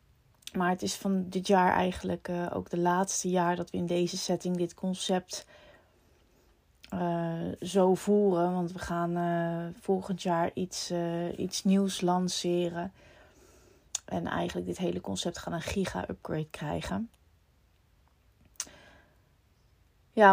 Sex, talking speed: female, 125 wpm